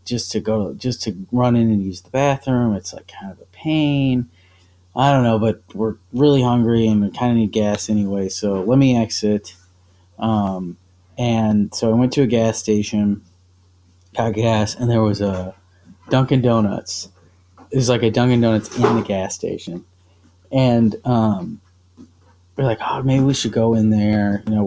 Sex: male